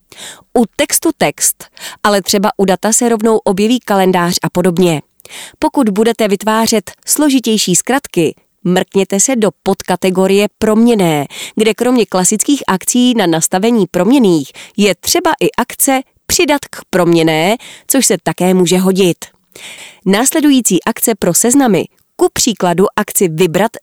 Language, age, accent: Czech, 30-49, native